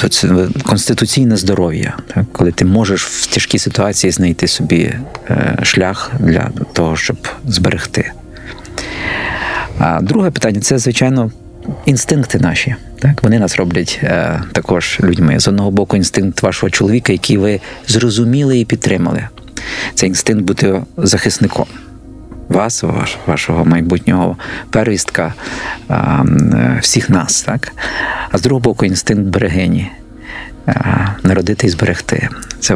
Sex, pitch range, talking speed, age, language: male, 100-125 Hz, 110 wpm, 50-69, Ukrainian